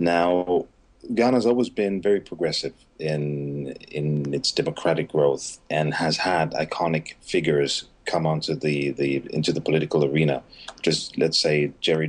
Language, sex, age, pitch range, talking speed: English, male, 30-49, 75-85 Hz, 145 wpm